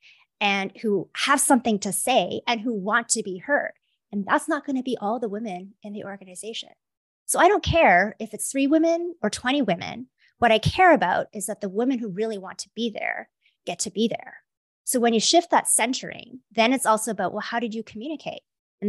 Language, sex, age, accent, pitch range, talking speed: English, female, 30-49, American, 195-260 Hz, 220 wpm